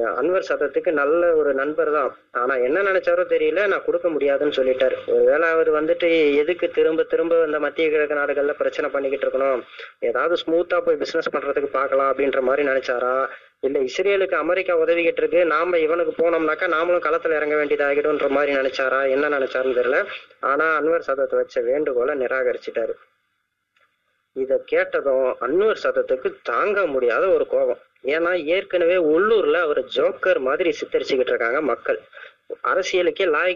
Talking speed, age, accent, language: 140 wpm, 30-49, native, Tamil